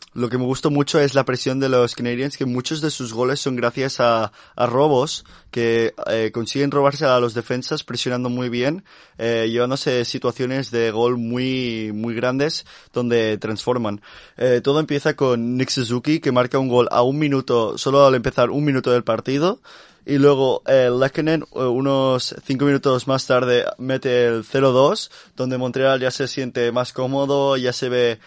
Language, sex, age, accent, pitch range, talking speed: Spanish, male, 20-39, Spanish, 120-135 Hz, 175 wpm